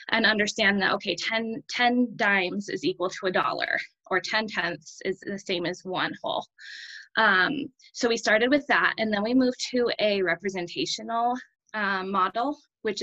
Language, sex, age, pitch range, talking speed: English, female, 20-39, 185-235 Hz, 170 wpm